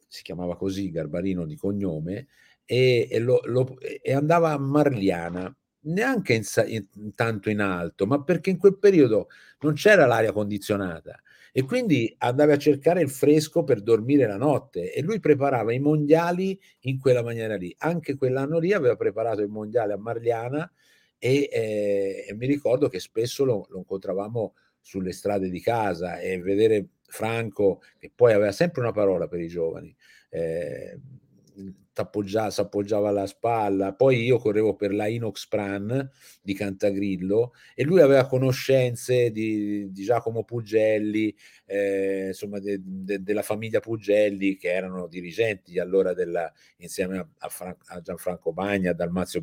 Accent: native